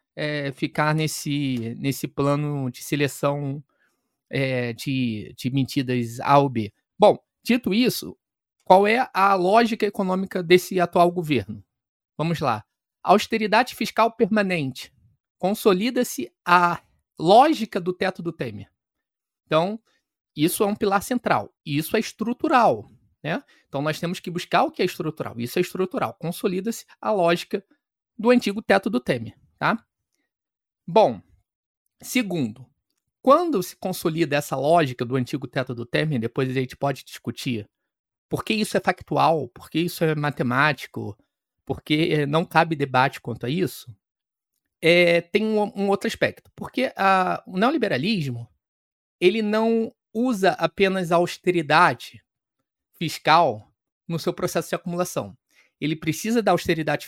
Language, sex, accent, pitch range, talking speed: Portuguese, male, Brazilian, 140-205 Hz, 130 wpm